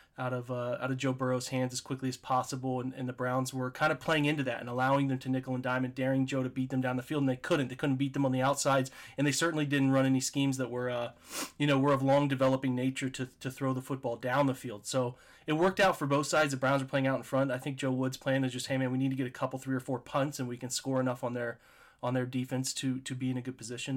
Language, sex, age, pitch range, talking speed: English, male, 30-49, 125-140 Hz, 305 wpm